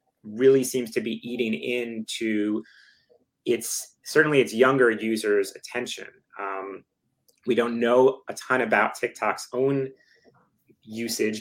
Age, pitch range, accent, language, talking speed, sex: 30-49, 110-130 Hz, American, English, 115 wpm, male